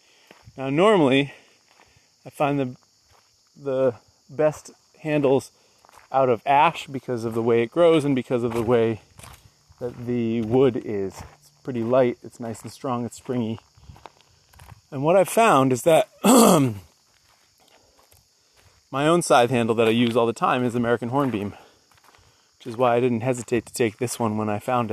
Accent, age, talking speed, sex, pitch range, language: American, 30-49, 160 wpm, male, 110-140 Hz, English